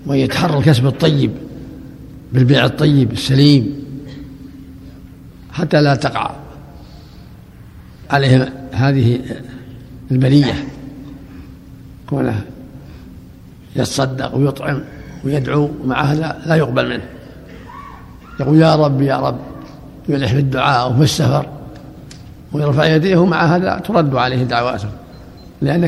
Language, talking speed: Arabic, 90 wpm